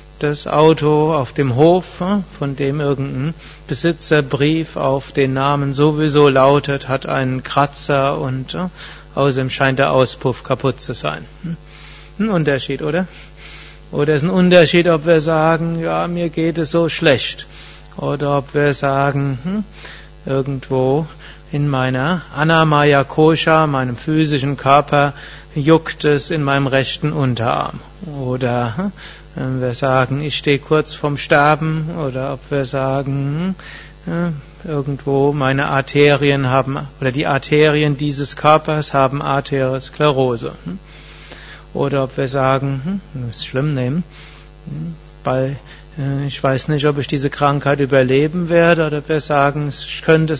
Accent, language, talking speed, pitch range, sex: German, German, 130 wpm, 135-155 Hz, male